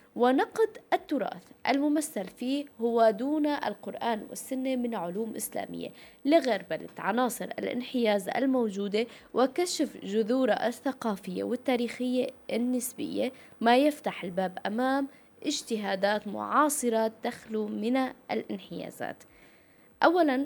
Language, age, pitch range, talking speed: Arabic, 20-39, 205-260 Hz, 90 wpm